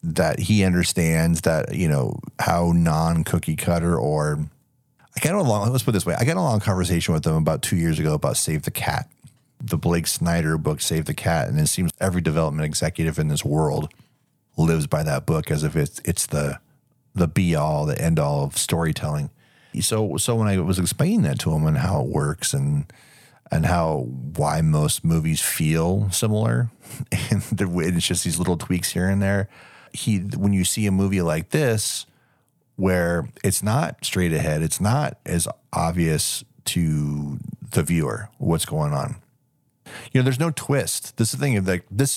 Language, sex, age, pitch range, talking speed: English, male, 40-59, 80-110 Hz, 190 wpm